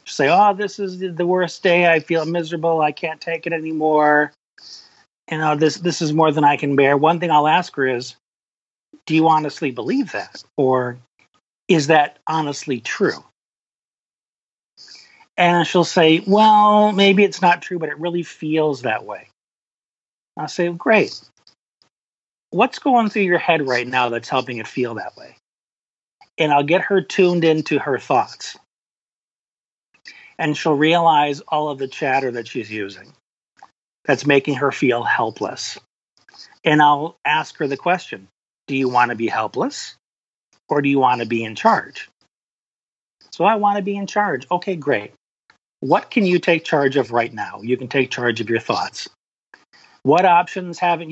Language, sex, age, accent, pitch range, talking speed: English, male, 40-59, American, 135-175 Hz, 165 wpm